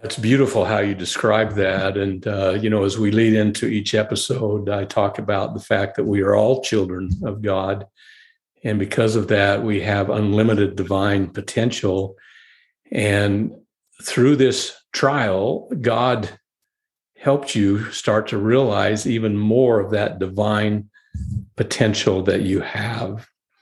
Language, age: English, 50-69